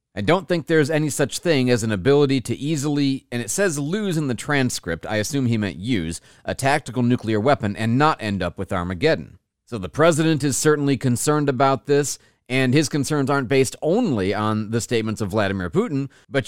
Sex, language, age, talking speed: male, English, 40-59, 200 wpm